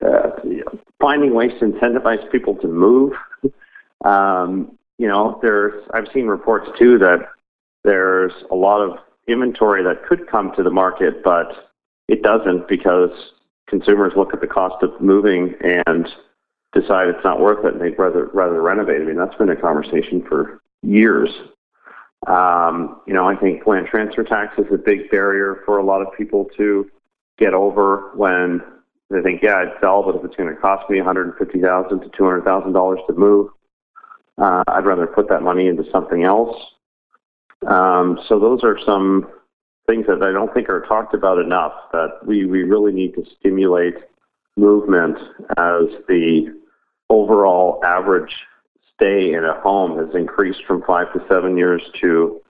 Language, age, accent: English, 40-59, American